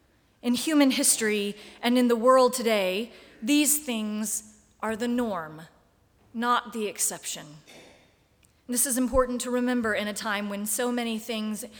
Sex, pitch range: female, 210-260 Hz